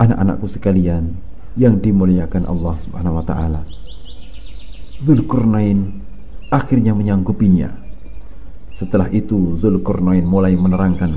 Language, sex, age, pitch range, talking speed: Indonesian, male, 50-69, 85-115 Hz, 85 wpm